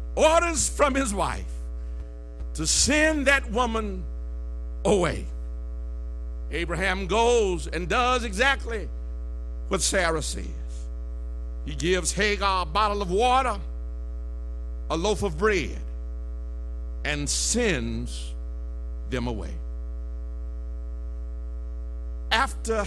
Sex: male